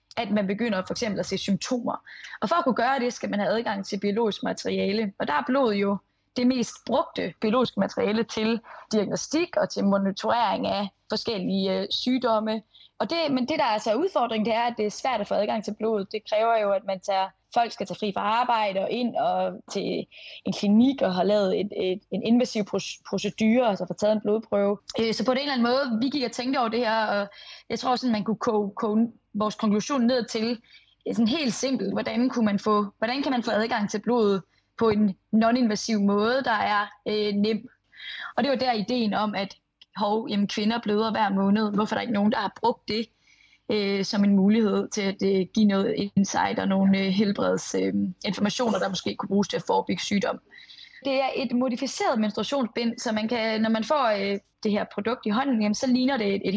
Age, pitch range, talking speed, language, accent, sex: 20-39, 200-240 Hz, 220 wpm, Danish, native, female